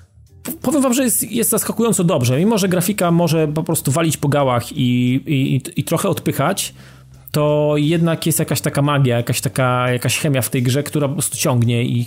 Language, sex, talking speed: Polish, male, 180 wpm